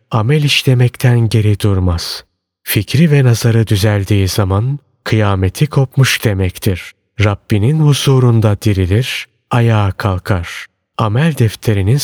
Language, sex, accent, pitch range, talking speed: Turkish, male, native, 100-130 Hz, 95 wpm